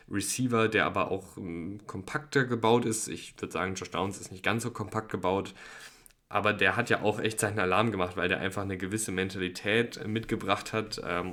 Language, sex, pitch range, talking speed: German, male, 95-110 Hz, 195 wpm